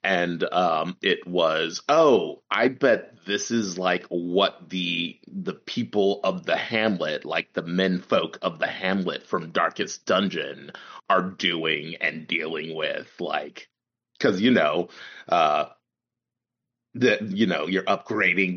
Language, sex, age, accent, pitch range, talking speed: English, male, 30-49, American, 90-115 Hz, 135 wpm